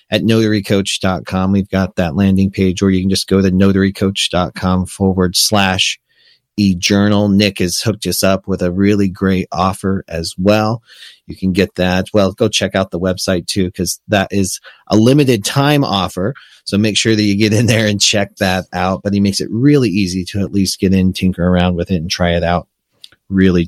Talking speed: 200 wpm